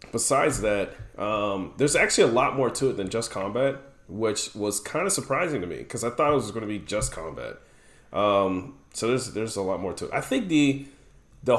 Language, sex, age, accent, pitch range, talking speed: English, male, 30-49, American, 105-140 Hz, 225 wpm